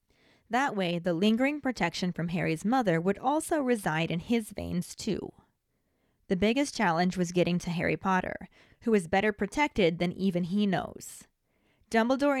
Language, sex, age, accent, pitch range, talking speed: English, female, 20-39, American, 175-220 Hz, 155 wpm